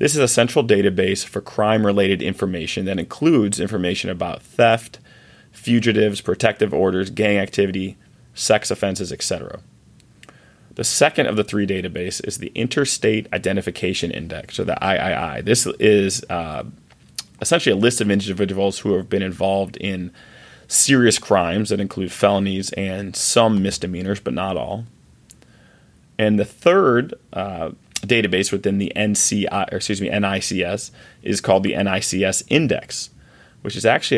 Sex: male